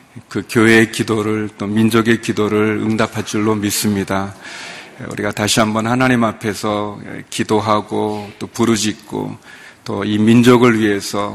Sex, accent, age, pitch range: male, native, 40-59, 105-120 Hz